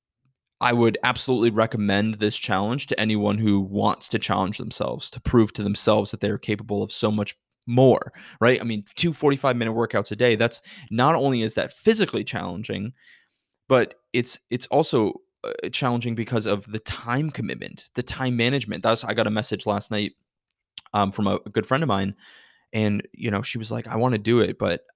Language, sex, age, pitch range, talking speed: English, male, 20-39, 100-120 Hz, 190 wpm